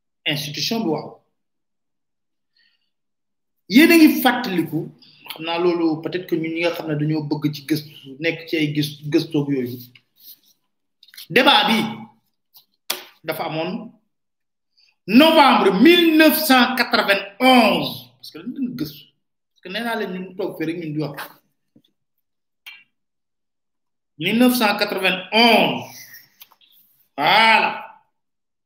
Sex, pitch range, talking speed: male, 155-250 Hz, 50 wpm